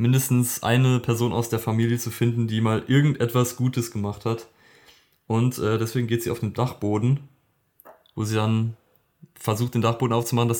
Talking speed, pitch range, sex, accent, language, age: 170 wpm, 105-120 Hz, male, German, German, 20-39